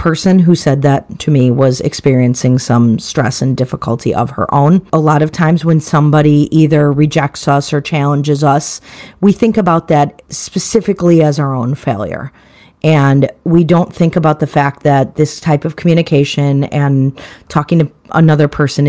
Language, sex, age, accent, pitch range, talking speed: English, female, 40-59, American, 140-165 Hz, 170 wpm